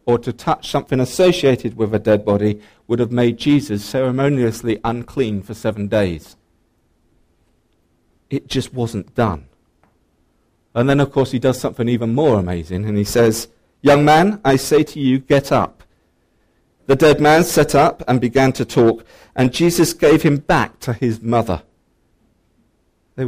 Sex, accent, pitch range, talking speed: male, British, 100-140 Hz, 155 wpm